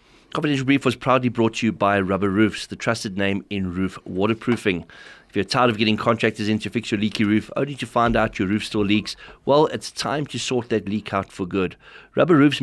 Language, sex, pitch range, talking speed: English, male, 100-120 Hz, 230 wpm